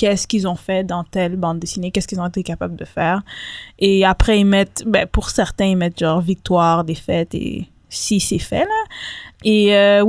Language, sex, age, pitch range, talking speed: French, female, 20-39, 190-220 Hz, 200 wpm